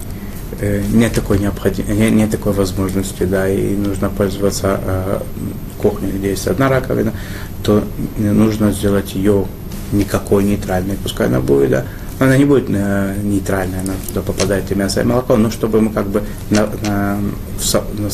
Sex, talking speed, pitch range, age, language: male, 140 wpm, 95-105 Hz, 20-39, Russian